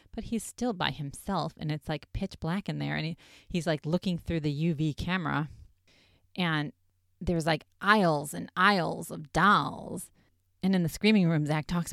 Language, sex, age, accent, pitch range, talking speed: English, female, 30-49, American, 150-195 Hz, 175 wpm